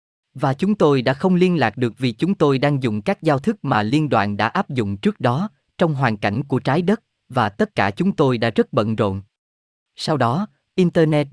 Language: Vietnamese